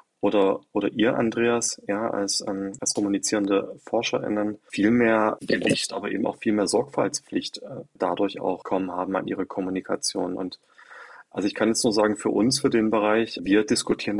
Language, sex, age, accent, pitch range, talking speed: German, male, 30-49, German, 95-105 Hz, 175 wpm